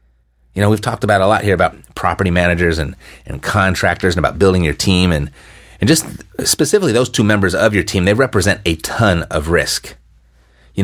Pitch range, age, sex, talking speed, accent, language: 85-105 Hz, 30-49, male, 200 wpm, American, English